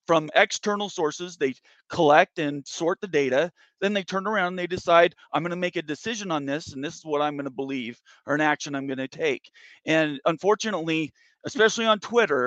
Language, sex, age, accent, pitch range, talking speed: English, male, 30-49, American, 155-200 Hz, 195 wpm